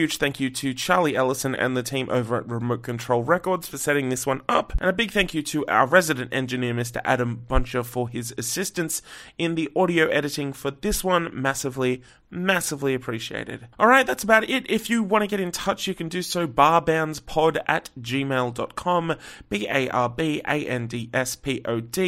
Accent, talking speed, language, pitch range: Australian, 170 wpm, English, 125-155 Hz